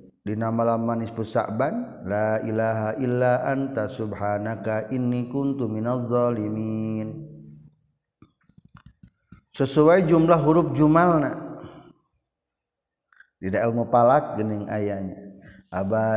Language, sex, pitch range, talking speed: Indonesian, male, 105-140 Hz, 80 wpm